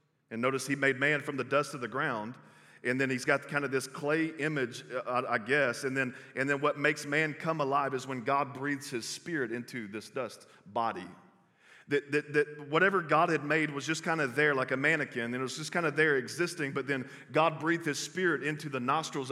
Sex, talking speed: male, 225 wpm